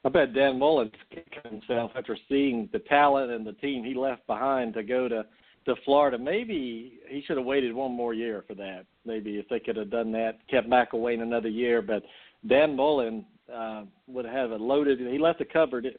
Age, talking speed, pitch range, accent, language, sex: 50-69, 210 wpm, 115-140 Hz, American, English, male